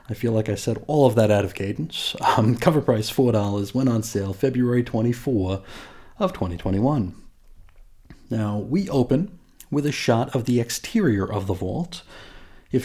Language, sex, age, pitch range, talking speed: English, male, 30-49, 105-145 Hz, 165 wpm